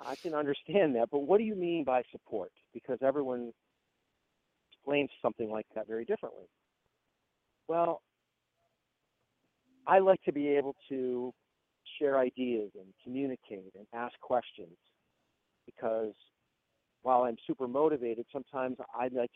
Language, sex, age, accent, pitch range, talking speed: English, male, 50-69, American, 115-150 Hz, 125 wpm